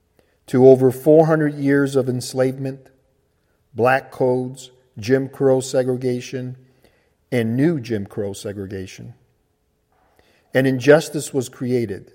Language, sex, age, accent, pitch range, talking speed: English, male, 50-69, American, 115-145 Hz, 100 wpm